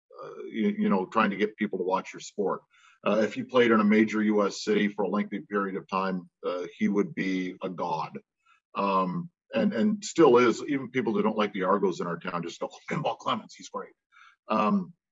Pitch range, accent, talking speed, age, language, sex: 105-165 Hz, American, 220 wpm, 40-59, English, male